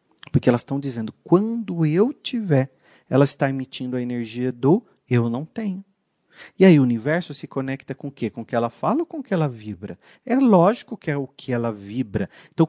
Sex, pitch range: male, 115-175 Hz